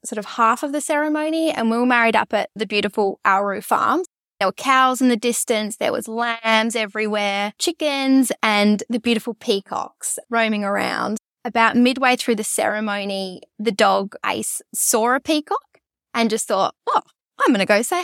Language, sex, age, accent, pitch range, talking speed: English, female, 10-29, Australian, 210-265 Hz, 175 wpm